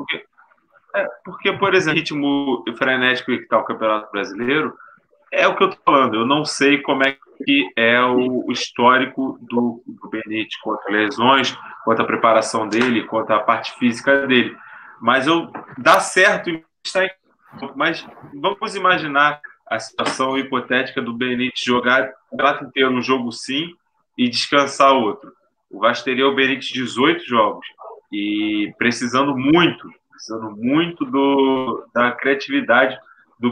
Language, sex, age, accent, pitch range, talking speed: Portuguese, male, 20-39, Brazilian, 120-160 Hz, 140 wpm